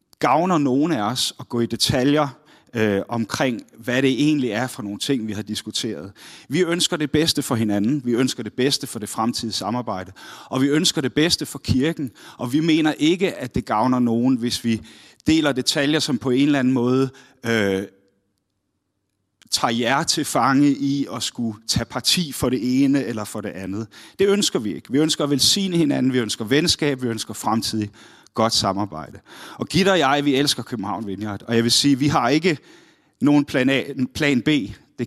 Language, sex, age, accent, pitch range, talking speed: Danish, male, 30-49, native, 110-140 Hz, 195 wpm